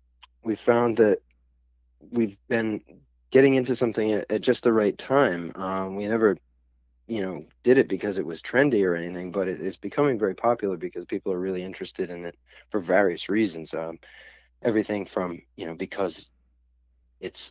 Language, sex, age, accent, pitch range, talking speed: English, male, 30-49, American, 85-105 Hz, 170 wpm